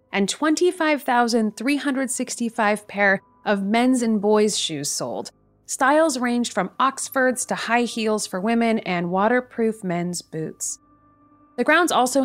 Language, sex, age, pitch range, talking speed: English, female, 30-49, 180-235 Hz, 120 wpm